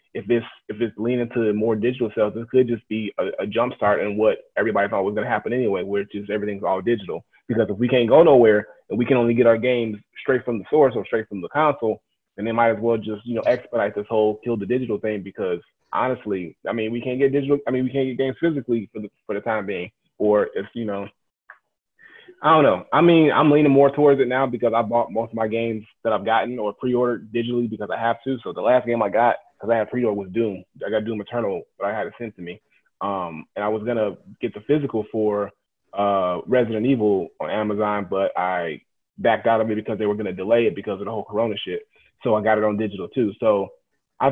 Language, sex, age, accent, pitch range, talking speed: English, male, 20-39, American, 105-125 Hz, 250 wpm